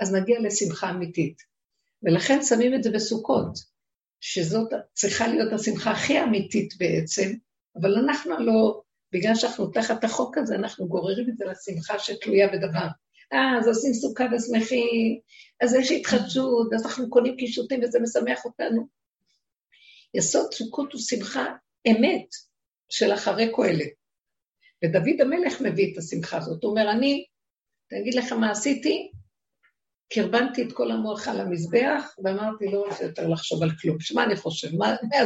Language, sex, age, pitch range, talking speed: Hebrew, female, 50-69, 190-245 Hz, 145 wpm